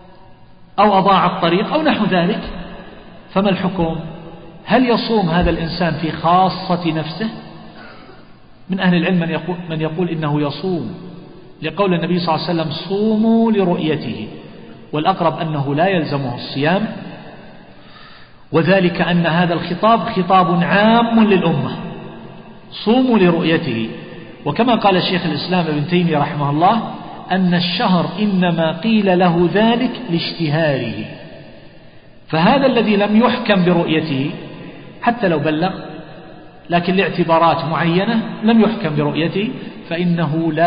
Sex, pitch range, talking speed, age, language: male, 160-200 Hz, 110 wpm, 50-69, Arabic